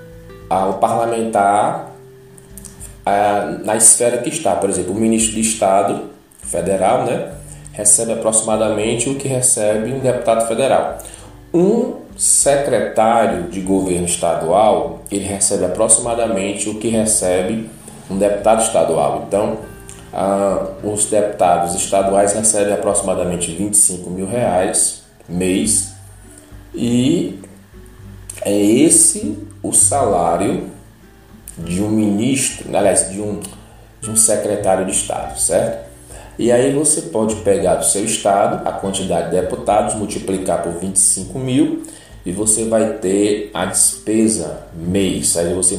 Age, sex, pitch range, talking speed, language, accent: 20-39, male, 95-110 Hz, 115 wpm, Portuguese, Brazilian